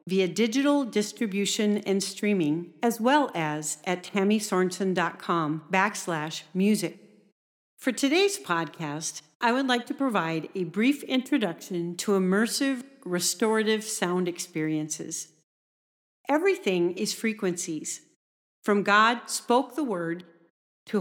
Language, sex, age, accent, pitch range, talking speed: English, female, 50-69, American, 180-240 Hz, 105 wpm